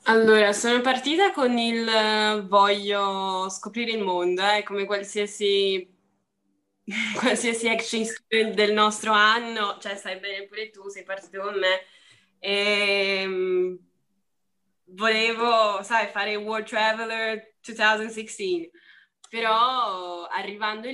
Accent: Italian